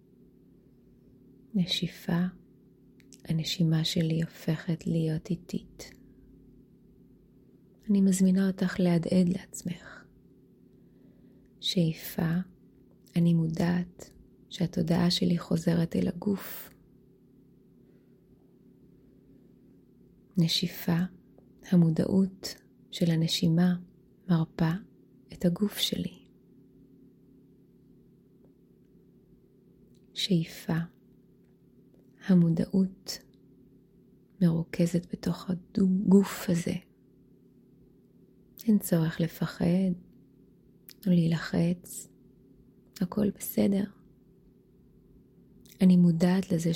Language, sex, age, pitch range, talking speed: Hebrew, female, 20-39, 165-190 Hz, 55 wpm